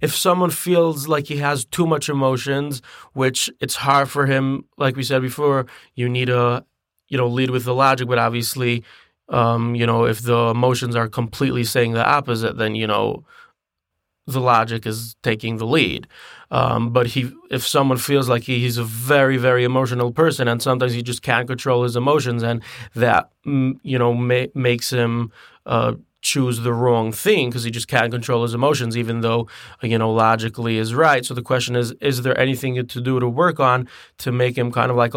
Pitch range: 115-130 Hz